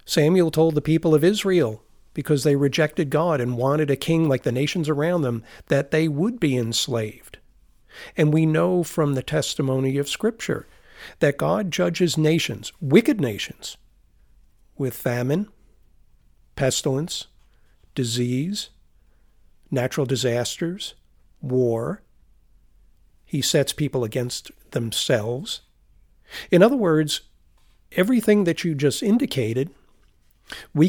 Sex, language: male, English